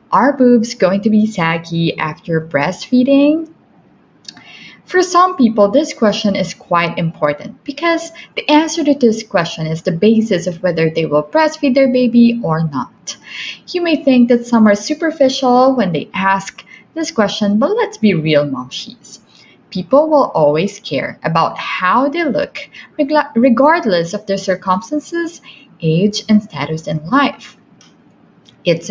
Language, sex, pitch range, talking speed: English, female, 180-270 Hz, 145 wpm